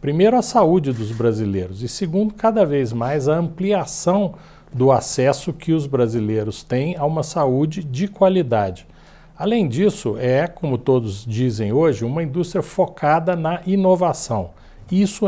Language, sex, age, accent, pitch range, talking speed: Portuguese, male, 60-79, Brazilian, 120-180 Hz, 140 wpm